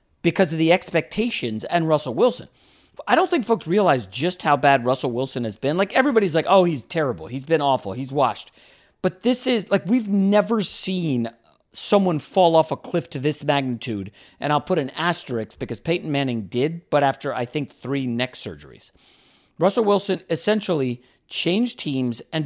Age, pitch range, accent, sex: 40-59, 130-185 Hz, American, male